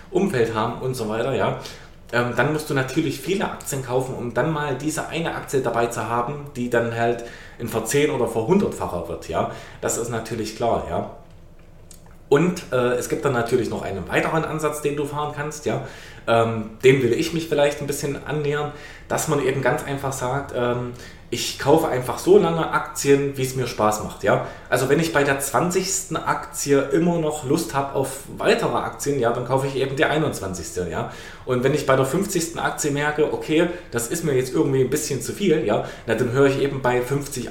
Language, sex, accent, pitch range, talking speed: German, male, German, 120-150 Hz, 195 wpm